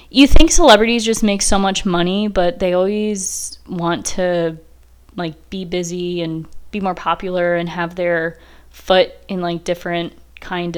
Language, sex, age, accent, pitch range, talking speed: English, female, 20-39, American, 170-215 Hz, 155 wpm